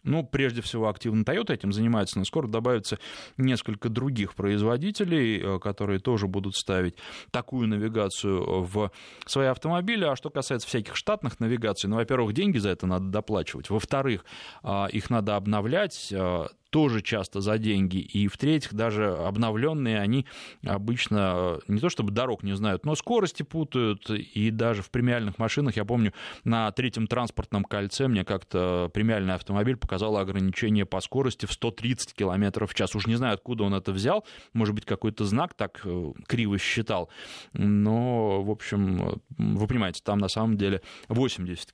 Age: 20-39